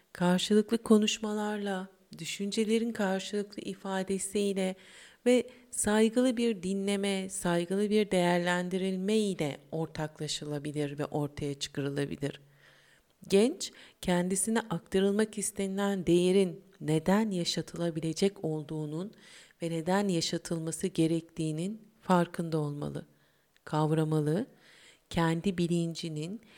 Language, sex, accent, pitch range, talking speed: Turkish, female, native, 165-210 Hz, 75 wpm